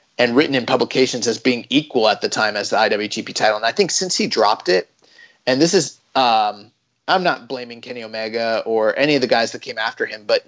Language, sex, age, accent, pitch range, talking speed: English, male, 30-49, American, 115-165 Hz, 230 wpm